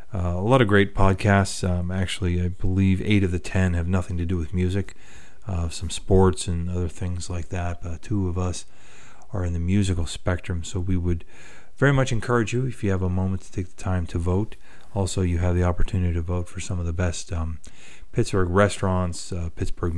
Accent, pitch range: American, 85-95 Hz